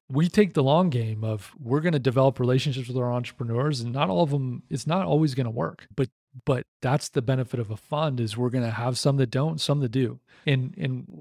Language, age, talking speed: English, 30-49, 230 wpm